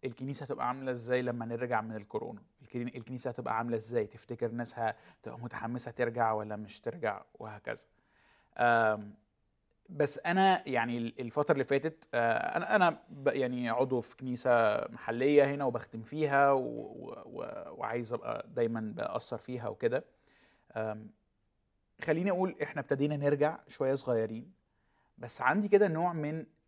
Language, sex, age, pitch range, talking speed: Arabic, male, 20-39, 115-140 Hz, 120 wpm